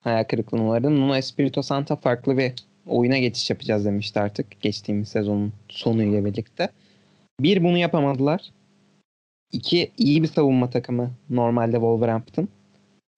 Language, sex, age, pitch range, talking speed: Turkish, male, 20-39, 110-130 Hz, 125 wpm